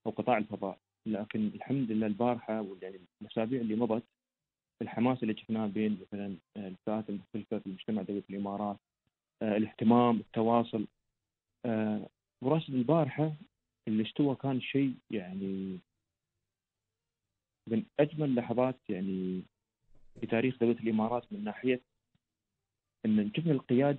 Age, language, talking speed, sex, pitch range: 30-49, Arabic, 55 wpm, male, 105-125 Hz